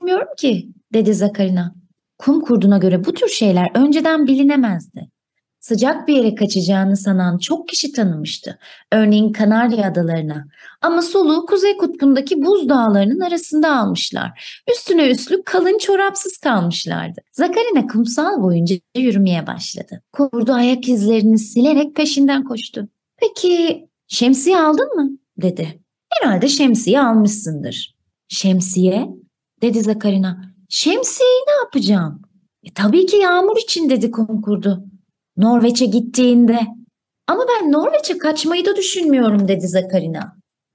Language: Turkish